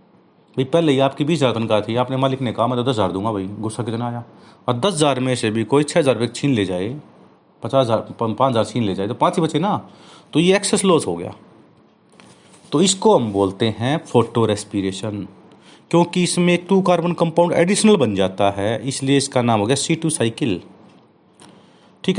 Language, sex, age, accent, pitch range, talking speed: Hindi, male, 40-59, native, 105-150 Hz, 205 wpm